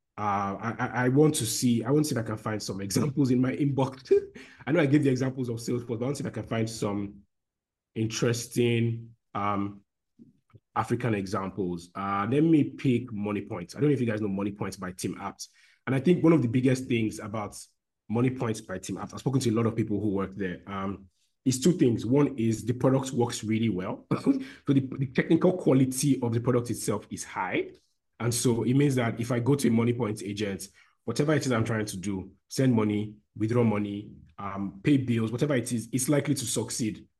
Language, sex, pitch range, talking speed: English, male, 105-130 Hz, 225 wpm